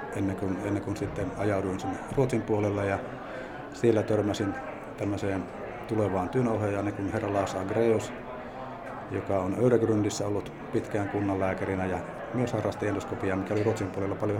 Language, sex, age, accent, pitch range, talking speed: Finnish, male, 50-69, native, 100-115 Hz, 155 wpm